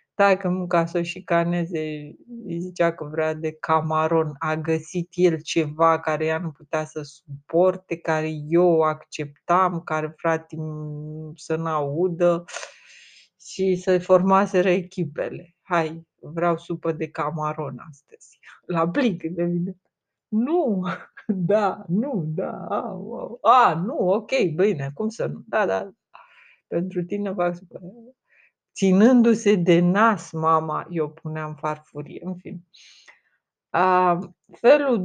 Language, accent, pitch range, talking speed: Romanian, native, 160-195 Hz, 125 wpm